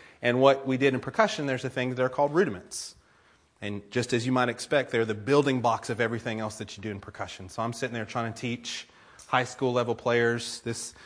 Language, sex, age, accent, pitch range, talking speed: English, male, 30-49, American, 115-135 Hz, 235 wpm